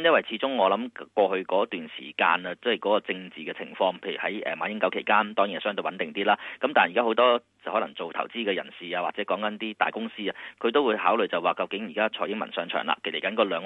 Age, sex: 30-49, male